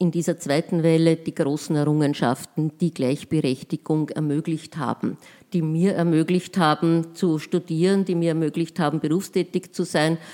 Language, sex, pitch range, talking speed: German, female, 160-185 Hz, 140 wpm